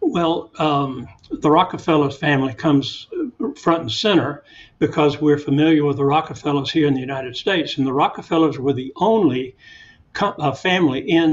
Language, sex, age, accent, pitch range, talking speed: English, male, 60-79, American, 135-160 Hz, 160 wpm